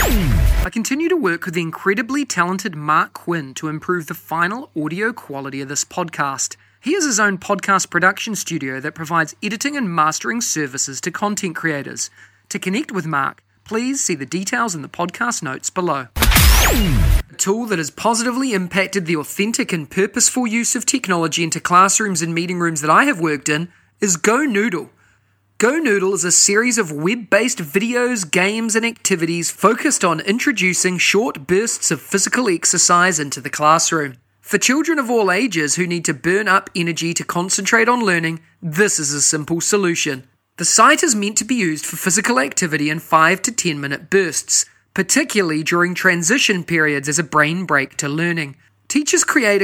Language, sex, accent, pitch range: English, male, Australian, 160-210 Hz